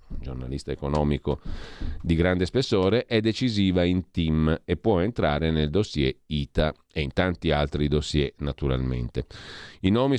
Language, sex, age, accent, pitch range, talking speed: Italian, male, 40-59, native, 75-105 Hz, 135 wpm